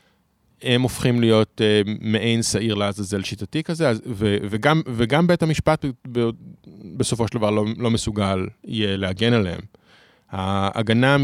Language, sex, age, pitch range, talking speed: Hebrew, male, 20-39, 105-135 Hz, 145 wpm